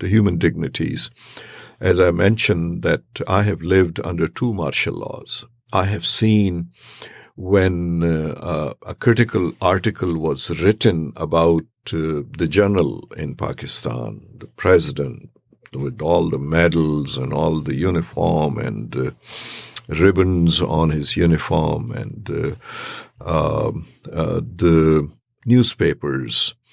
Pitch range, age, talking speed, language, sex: 85-115 Hz, 50-69, 115 wpm, English, male